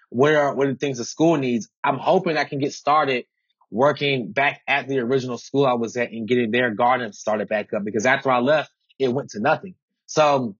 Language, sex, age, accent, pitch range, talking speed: English, male, 20-39, American, 125-155 Hz, 220 wpm